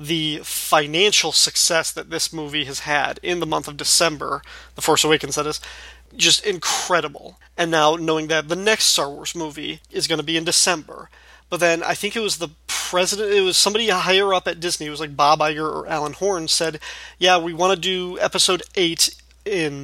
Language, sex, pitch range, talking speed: English, male, 155-190 Hz, 205 wpm